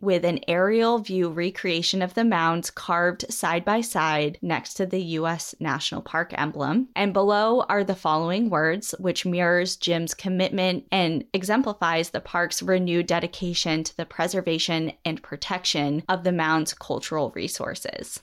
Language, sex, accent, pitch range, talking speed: English, female, American, 165-195 Hz, 140 wpm